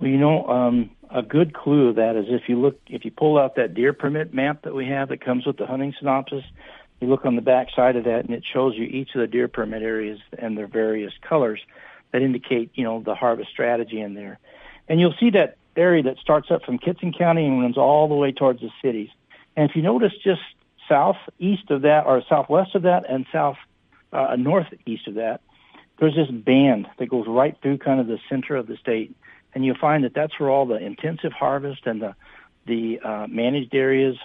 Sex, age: male, 60-79